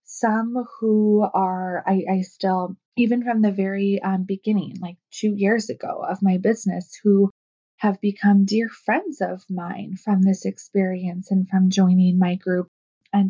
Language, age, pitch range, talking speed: English, 20-39, 185-215 Hz, 160 wpm